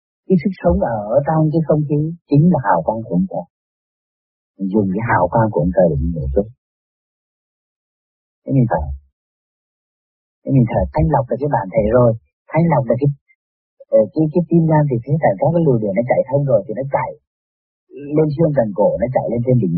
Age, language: 40-59, Vietnamese